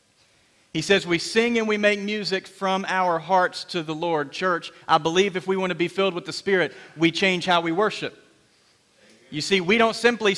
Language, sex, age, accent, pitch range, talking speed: English, male, 40-59, American, 155-195 Hz, 210 wpm